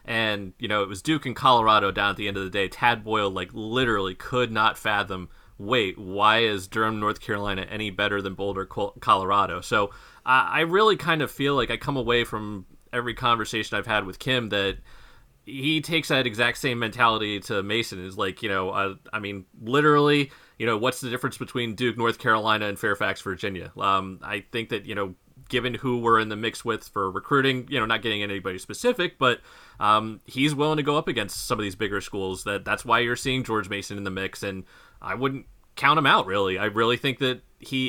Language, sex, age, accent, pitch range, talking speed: English, male, 30-49, American, 100-130 Hz, 215 wpm